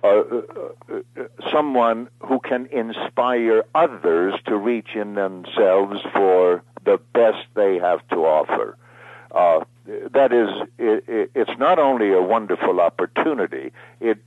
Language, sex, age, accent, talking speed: English, male, 60-79, American, 130 wpm